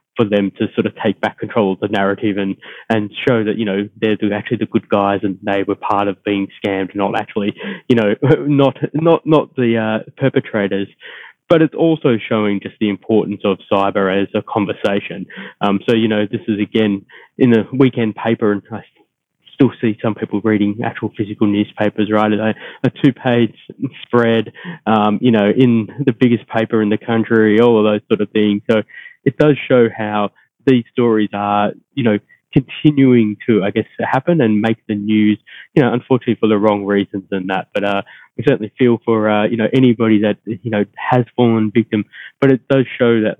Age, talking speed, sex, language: 20-39, 195 wpm, male, English